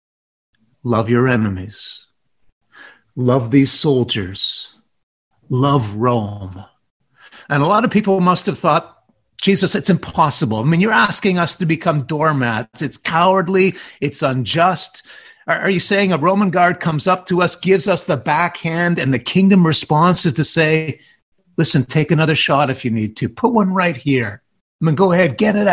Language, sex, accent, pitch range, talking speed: English, male, American, 130-185 Hz, 165 wpm